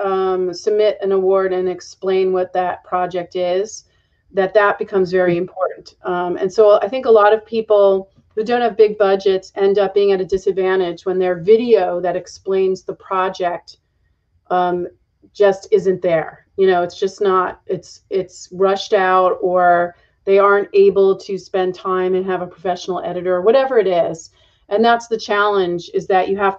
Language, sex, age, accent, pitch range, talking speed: English, female, 30-49, American, 185-215 Hz, 180 wpm